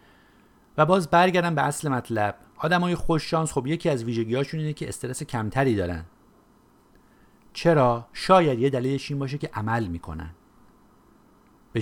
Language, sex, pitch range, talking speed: Persian, male, 95-125 Hz, 140 wpm